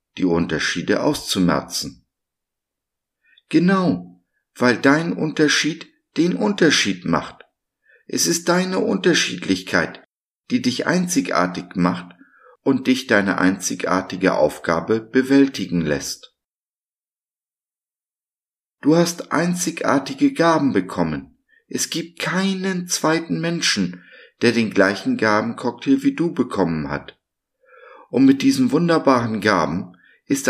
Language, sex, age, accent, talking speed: German, male, 50-69, German, 95 wpm